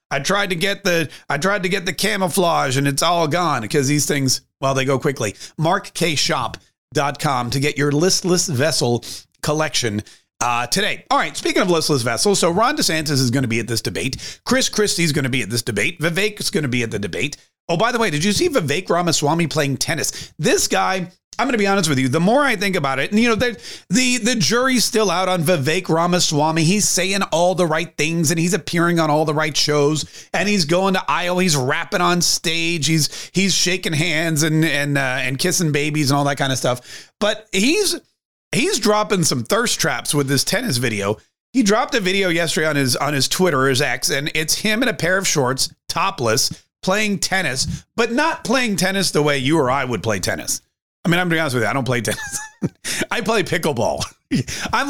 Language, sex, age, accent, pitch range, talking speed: English, male, 30-49, American, 140-195 Hz, 220 wpm